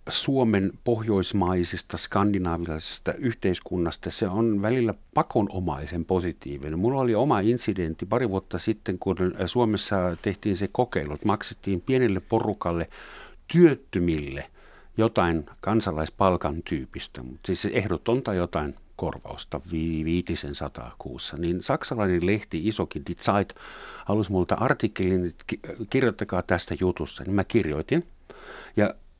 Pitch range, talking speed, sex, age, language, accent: 90-125 Hz, 110 wpm, male, 50-69, Finnish, native